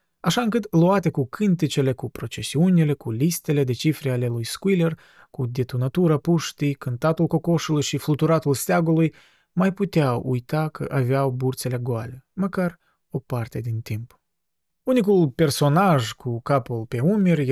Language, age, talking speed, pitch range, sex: Romanian, 20-39, 135 wpm, 125-165 Hz, male